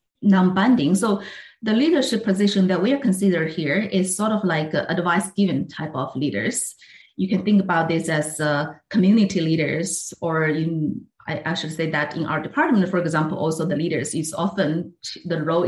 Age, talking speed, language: 30-49, 190 wpm, English